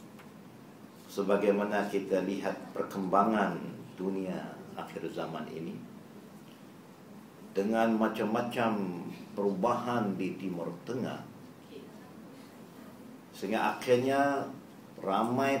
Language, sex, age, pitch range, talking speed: Malay, male, 50-69, 100-125 Hz, 65 wpm